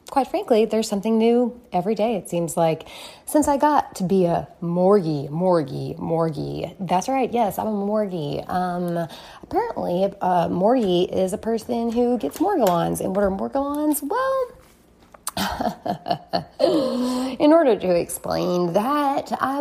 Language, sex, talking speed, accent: English, female, 145 wpm, American